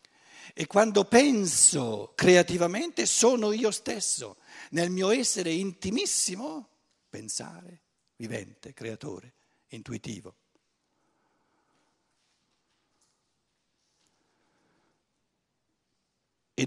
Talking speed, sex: 60 wpm, male